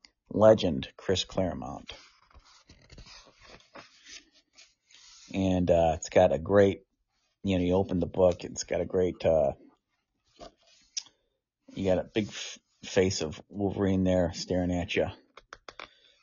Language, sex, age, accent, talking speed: English, male, 30-49, American, 115 wpm